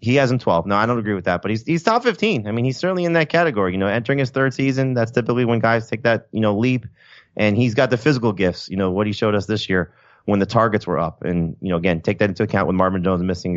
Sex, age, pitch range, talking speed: male, 30-49, 85-105 Hz, 295 wpm